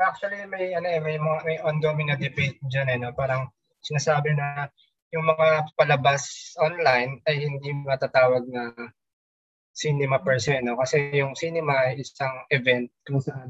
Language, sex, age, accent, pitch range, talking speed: Filipino, male, 20-39, native, 130-155 Hz, 150 wpm